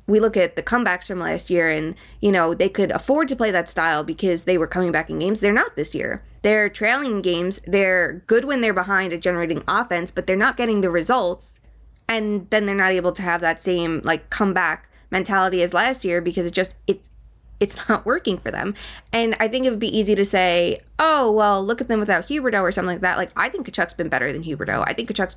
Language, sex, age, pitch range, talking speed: English, female, 20-39, 175-215 Hz, 240 wpm